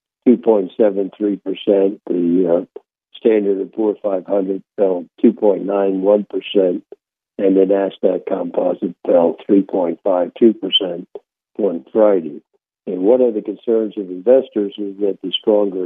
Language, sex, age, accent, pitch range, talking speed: English, male, 60-79, American, 95-115 Hz, 105 wpm